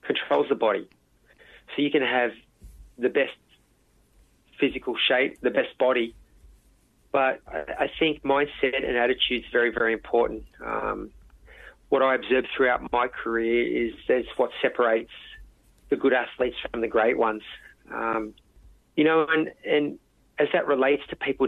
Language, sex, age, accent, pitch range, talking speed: English, male, 30-49, Australian, 115-150 Hz, 145 wpm